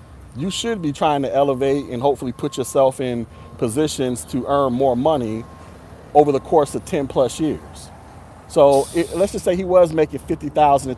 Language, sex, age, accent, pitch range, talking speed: English, male, 30-49, American, 100-150 Hz, 180 wpm